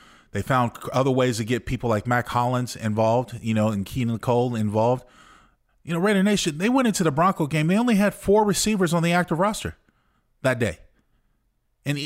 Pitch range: 115-155 Hz